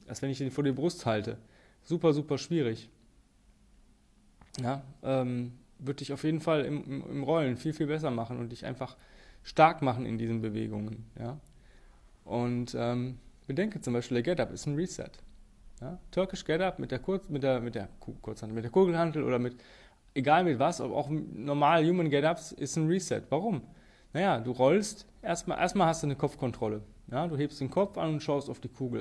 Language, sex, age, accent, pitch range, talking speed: German, male, 20-39, German, 120-160 Hz, 190 wpm